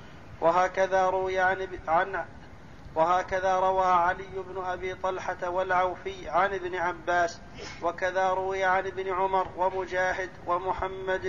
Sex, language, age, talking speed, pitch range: male, Arabic, 40-59, 100 wpm, 180-190 Hz